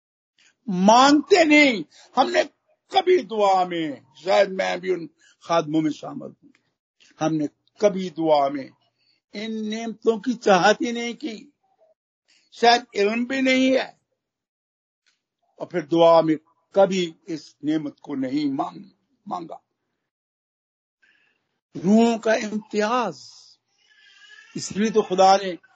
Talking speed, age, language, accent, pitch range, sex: 110 wpm, 60-79, Hindi, native, 175-260 Hz, male